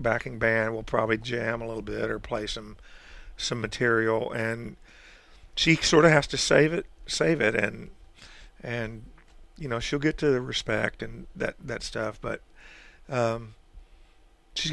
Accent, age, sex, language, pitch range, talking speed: American, 50-69, male, English, 115-140 Hz, 160 wpm